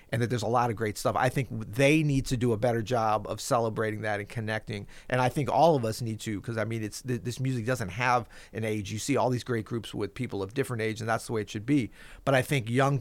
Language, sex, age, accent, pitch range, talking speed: English, male, 40-59, American, 115-145 Hz, 285 wpm